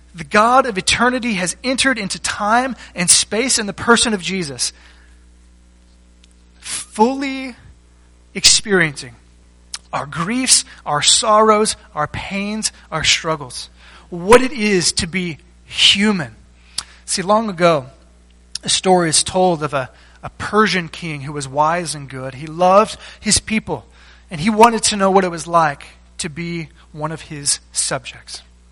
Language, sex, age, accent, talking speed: English, male, 30-49, American, 140 wpm